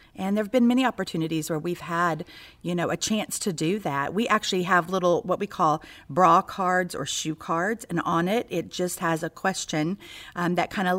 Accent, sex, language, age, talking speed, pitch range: American, female, English, 40-59, 220 wpm, 165-215 Hz